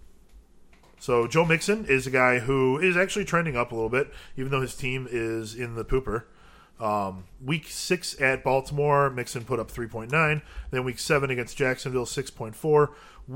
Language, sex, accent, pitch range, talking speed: English, male, American, 115-140 Hz, 165 wpm